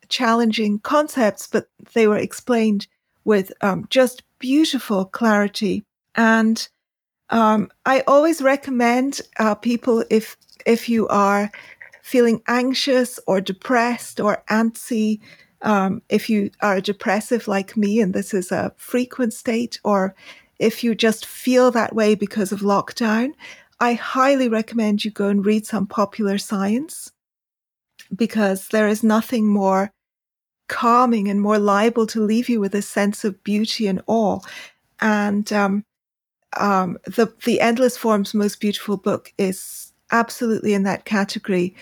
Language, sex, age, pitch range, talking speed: English, female, 40-59, 200-235 Hz, 135 wpm